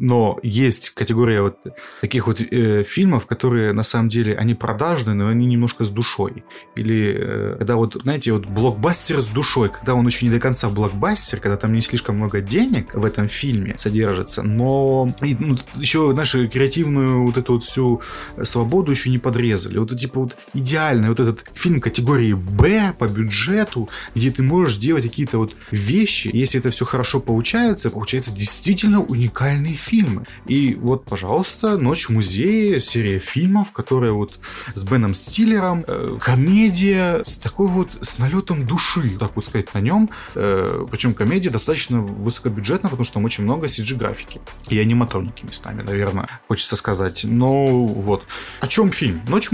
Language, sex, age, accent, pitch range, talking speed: Russian, male, 20-39, native, 110-140 Hz, 165 wpm